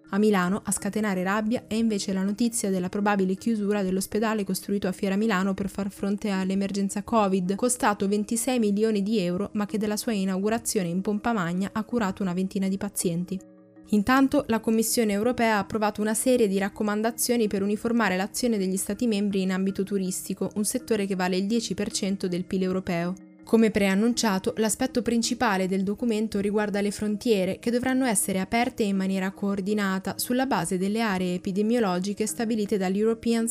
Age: 10-29